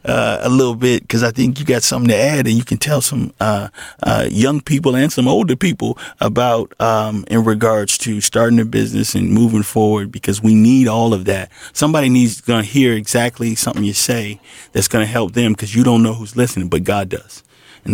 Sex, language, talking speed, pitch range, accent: male, English, 215 wpm, 115-150 Hz, American